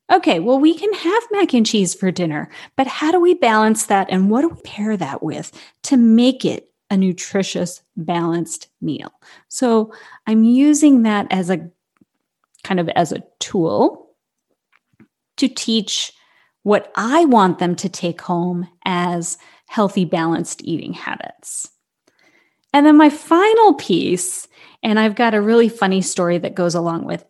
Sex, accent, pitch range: female, American, 185-275 Hz